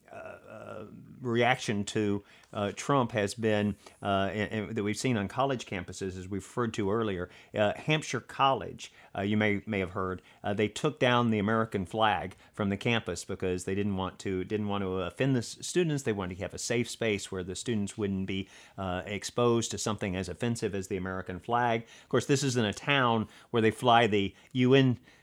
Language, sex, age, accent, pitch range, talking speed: English, male, 40-59, American, 100-120 Hz, 200 wpm